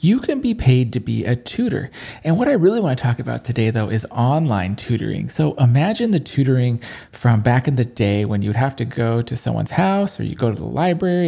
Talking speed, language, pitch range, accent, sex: 230 wpm, English, 115-165 Hz, American, male